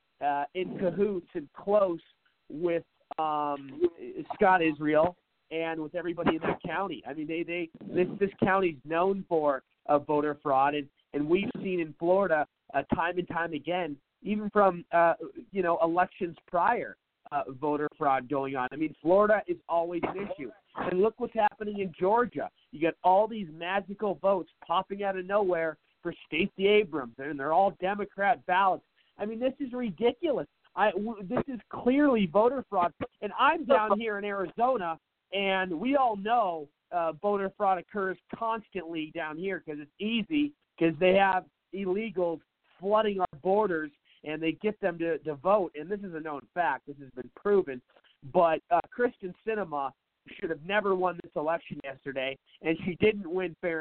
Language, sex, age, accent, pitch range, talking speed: English, male, 40-59, American, 160-205 Hz, 170 wpm